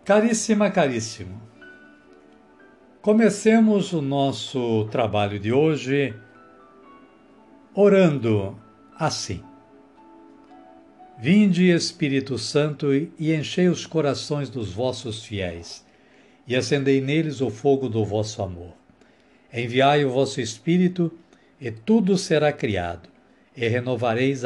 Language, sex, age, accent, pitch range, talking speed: Portuguese, male, 60-79, Brazilian, 110-170 Hz, 95 wpm